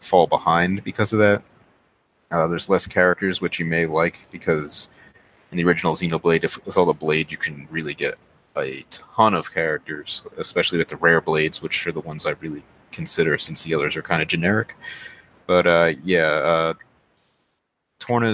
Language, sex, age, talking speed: English, male, 30-49, 175 wpm